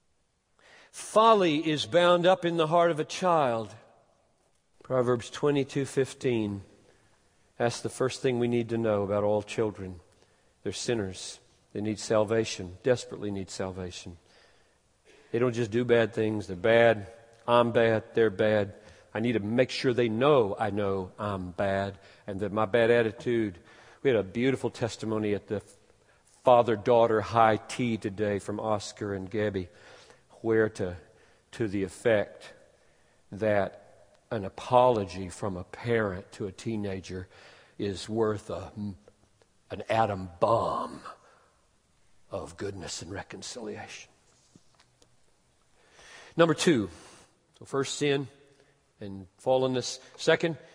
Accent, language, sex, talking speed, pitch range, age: American, Hindi, male, 125 wpm, 100-130 Hz, 50-69